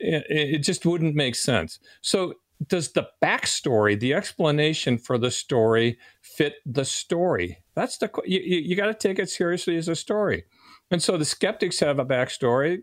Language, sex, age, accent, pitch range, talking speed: English, male, 50-69, American, 115-155 Hz, 165 wpm